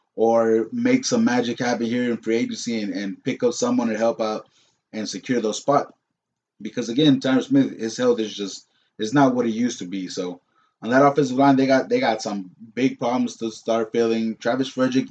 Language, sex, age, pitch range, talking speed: English, male, 20-39, 115-150 Hz, 210 wpm